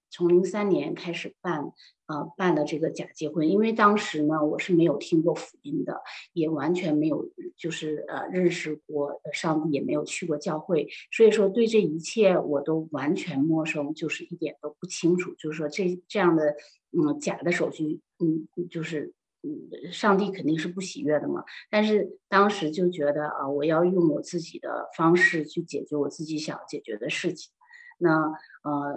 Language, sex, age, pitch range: Chinese, female, 30-49, 150-185 Hz